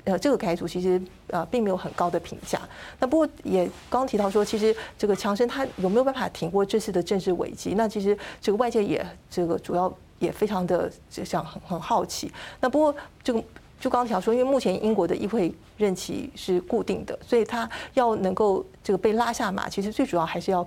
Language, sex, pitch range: Chinese, female, 185-235 Hz